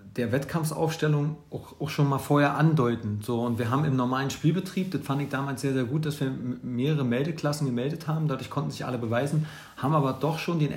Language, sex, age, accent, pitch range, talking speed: German, male, 40-59, German, 120-150 Hz, 210 wpm